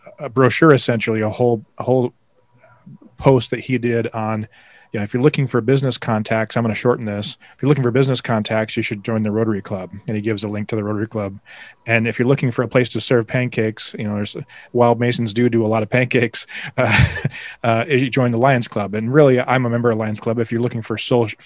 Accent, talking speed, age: American, 240 wpm, 30-49